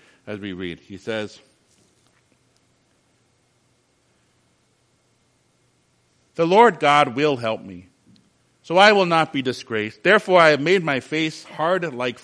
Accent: American